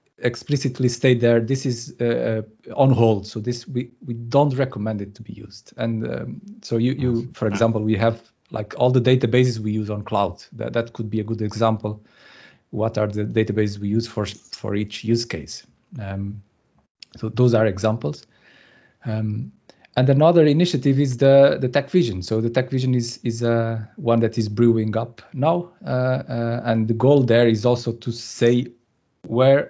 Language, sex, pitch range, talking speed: English, male, 115-130 Hz, 185 wpm